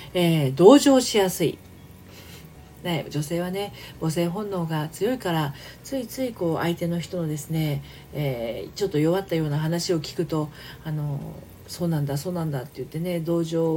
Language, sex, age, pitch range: Japanese, female, 40-59, 150-195 Hz